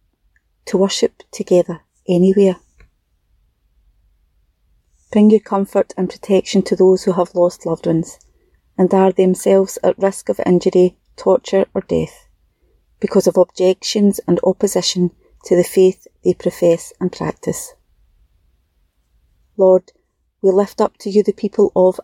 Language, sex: English, female